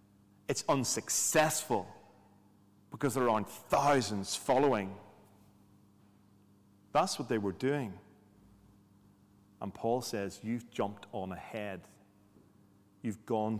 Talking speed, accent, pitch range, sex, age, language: 95 wpm, British, 100-130 Hz, male, 30-49, English